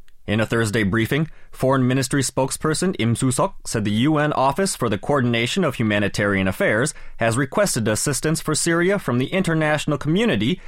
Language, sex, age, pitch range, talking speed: English, male, 30-49, 105-140 Hz, 155 wpm